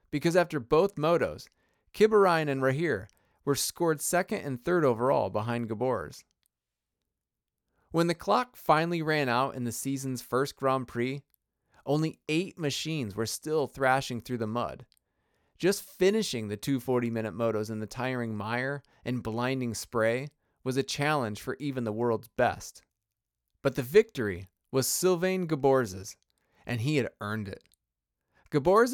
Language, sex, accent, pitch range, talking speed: English, male, American, 115-155 Hz, 140 wpm